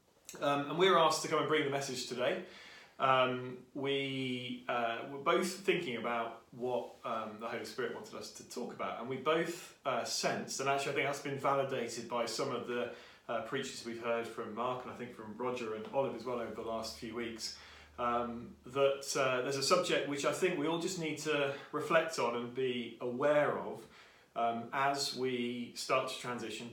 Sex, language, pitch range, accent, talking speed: male, English, 115-145 Hz, British, 205 wpm